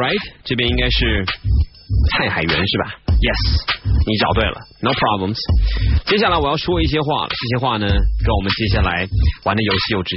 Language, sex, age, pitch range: Chinese, male, 20-39, 95-120 Hz